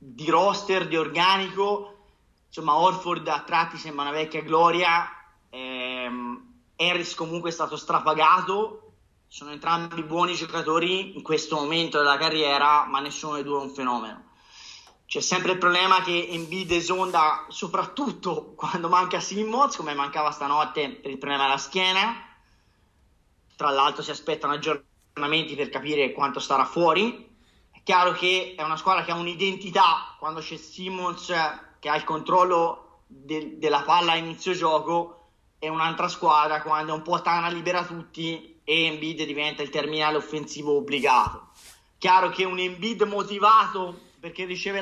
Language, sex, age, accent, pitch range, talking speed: Italian, male, 30-49, native, 155-180 Hz, 145 wpm